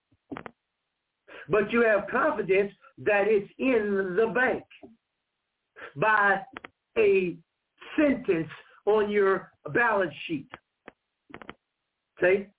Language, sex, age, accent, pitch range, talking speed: English, male, 60-79, American, 195-250 Hz, 80 wpm